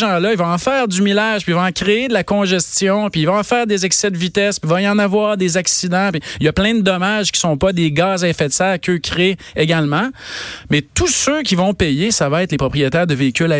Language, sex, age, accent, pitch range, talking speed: French, male, 40-59, Canadian, 155-200 Hz, 280 wpm